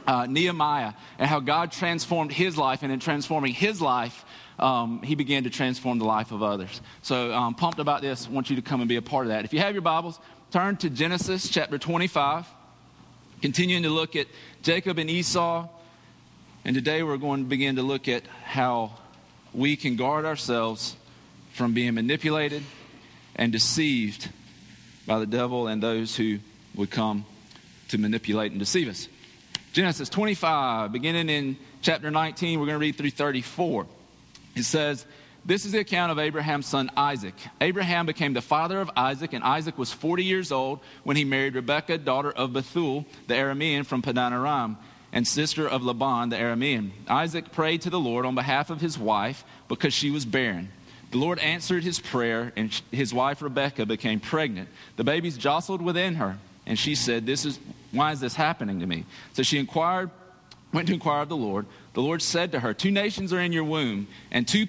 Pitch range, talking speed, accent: 120-165 Hz, 185 wpm, American